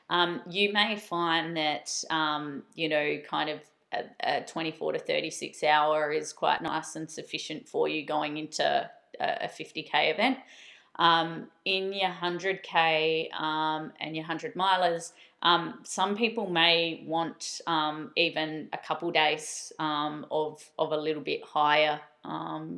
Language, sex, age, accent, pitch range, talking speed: English, female, 20-39, Australian, 150-175 Hz, 140 wpm